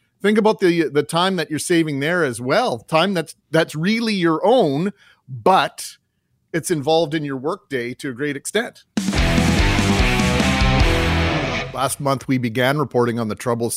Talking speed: 155 wpm